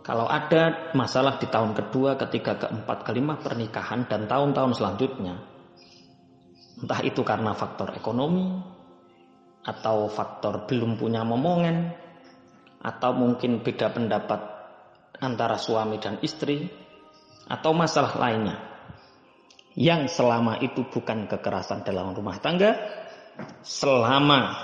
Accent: native